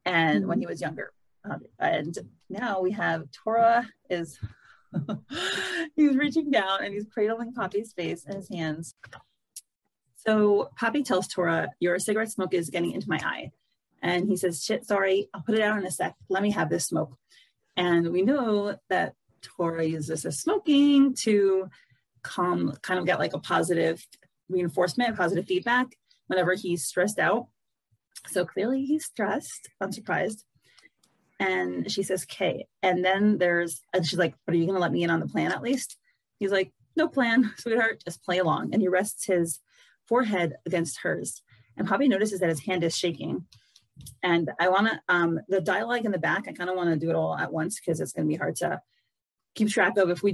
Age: 30-49